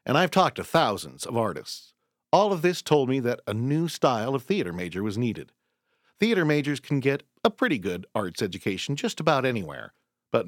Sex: male